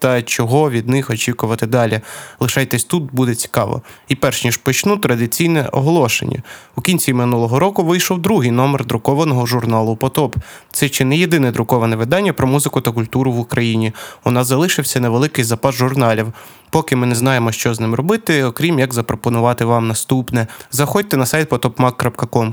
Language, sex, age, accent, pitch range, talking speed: Ukrainian, male, 20-39, native, 115-145 Hz, 160 wpm